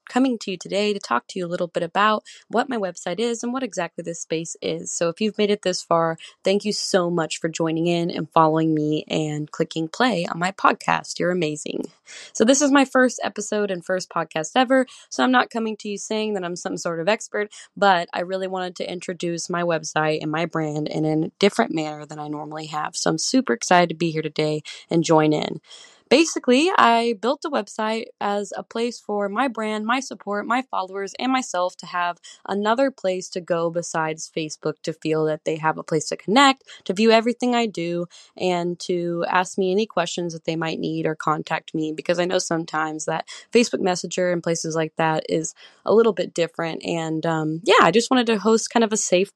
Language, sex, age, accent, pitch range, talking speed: English, female, 20-39, American, 160-210 Hz, 220 wpm